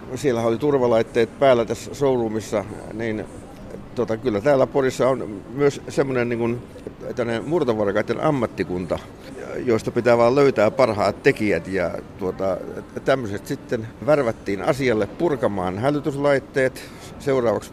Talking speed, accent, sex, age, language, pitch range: 110 wpm, native, male, 60-79, Finnish, 105-130 Hz